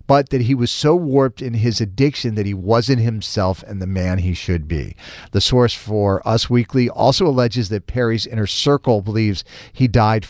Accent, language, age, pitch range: American, English, 50-69, 105-155 Hz